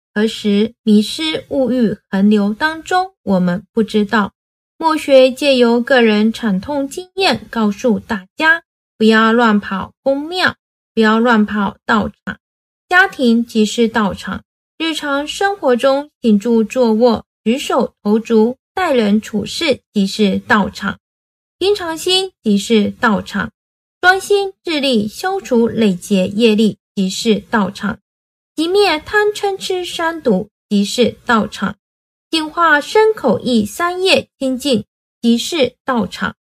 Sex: female